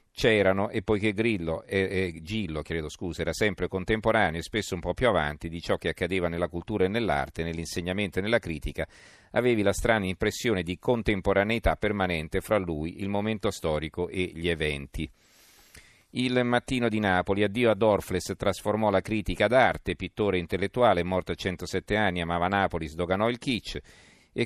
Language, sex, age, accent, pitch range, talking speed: Italian, male, 50-69, native, 90-105 Hz, 170 wpm